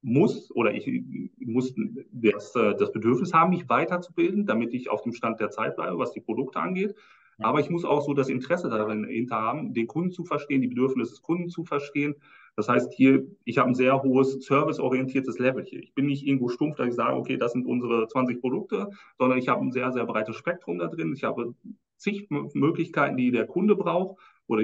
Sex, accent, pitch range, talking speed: male, German, 125-150 Hz, 205 wpm